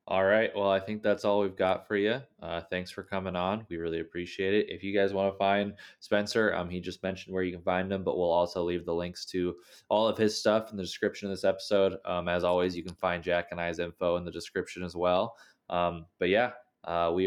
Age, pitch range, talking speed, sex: 20-39, 85-100 Hz, 255 wpm, male